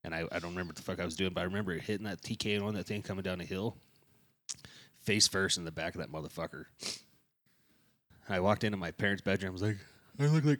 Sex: male